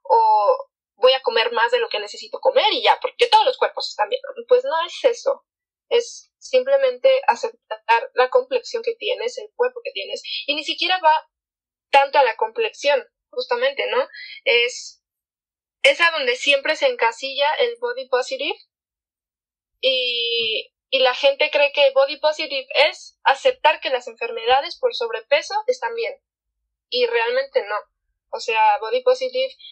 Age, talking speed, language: 20-39, 155 wpm, Spanish